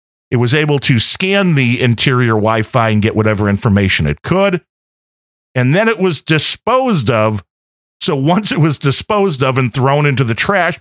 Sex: male